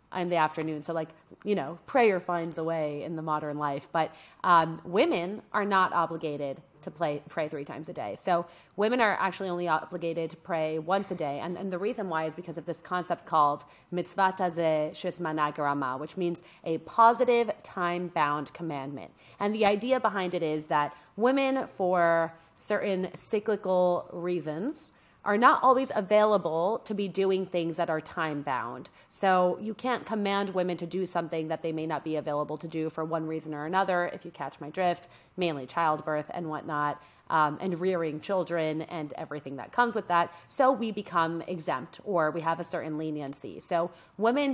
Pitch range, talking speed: 155-190 Hz, 180 wpm